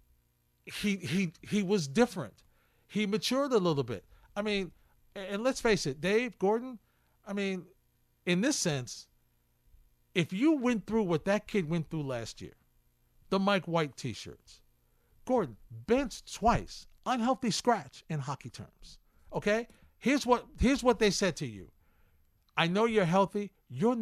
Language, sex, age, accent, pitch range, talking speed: English, male, 50-69, American, 145-225 Hz, 150 wpm